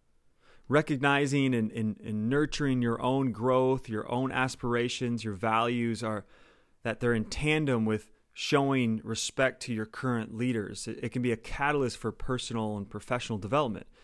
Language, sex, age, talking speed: English, male, 30-49, 155 wpm